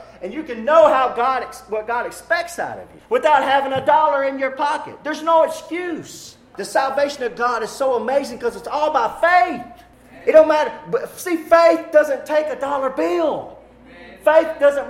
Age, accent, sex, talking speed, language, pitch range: 40-59, American, male, 185 wpm, English, 270-325 Hz